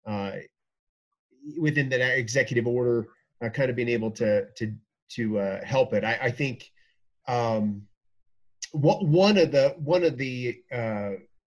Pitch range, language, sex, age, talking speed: 115-155 Hz, English, male, 30-49, 140 wpm